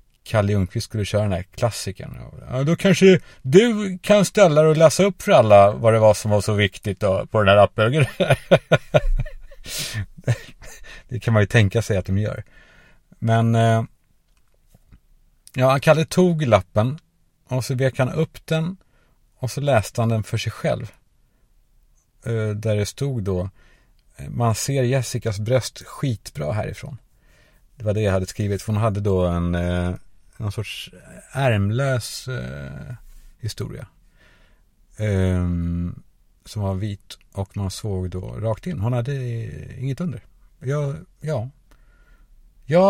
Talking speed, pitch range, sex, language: 145 wpm, 100-130 Hz, male, Swedish